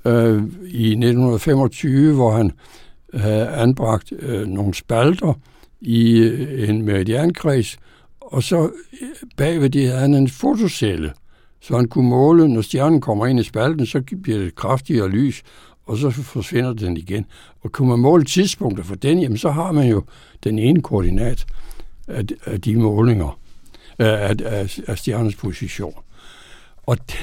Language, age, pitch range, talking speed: Danish, 60-79, 110-140 Hz, 135 wpm